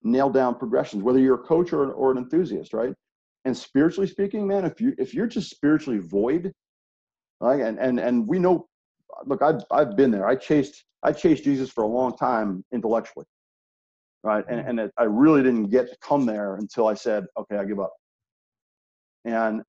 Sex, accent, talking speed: male, American, 190 wpm